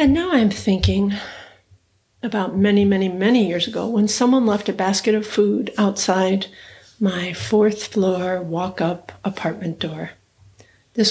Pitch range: 185-215 Hz